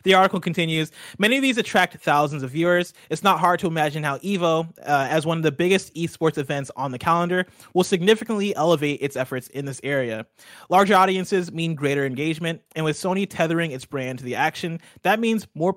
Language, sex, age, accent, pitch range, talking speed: English, male, 20-39, American, 140-180 Hz, 200 wpm